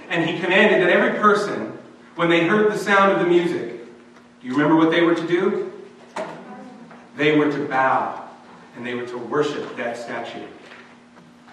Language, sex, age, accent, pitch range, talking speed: English, male, 40-59, American, 150-200 Hz, 170 wpm